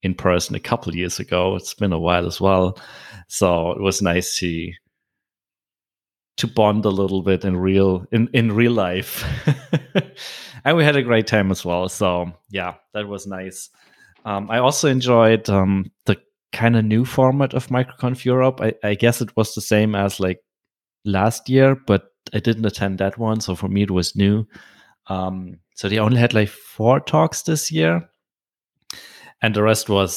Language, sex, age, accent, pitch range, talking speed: English, male, 30-49, German, 95-115 Hz, 185 wpm